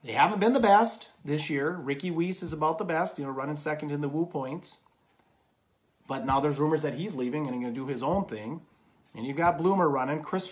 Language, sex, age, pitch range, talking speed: English, male, 40-59, 135-160 Hz, 240 wpm